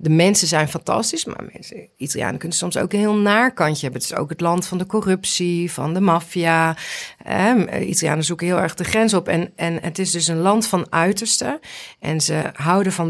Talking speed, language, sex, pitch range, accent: 215 wpm, Dutch, female, 155-185 Hz, Dutch